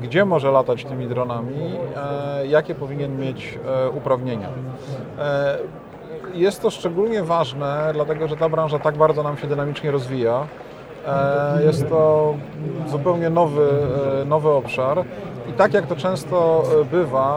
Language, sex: Polish, male